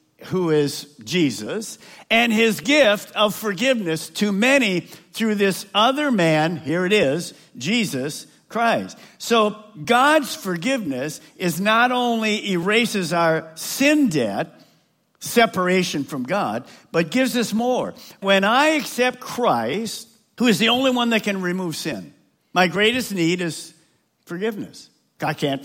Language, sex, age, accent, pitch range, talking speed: English, male, 50-69, American, 150-220 Hz, 130 wpm